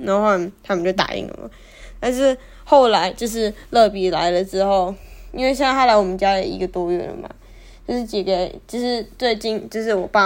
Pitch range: 190-225 Hz